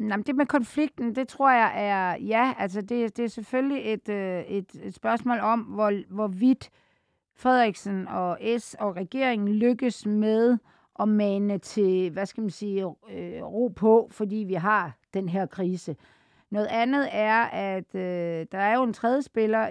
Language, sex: Danish, female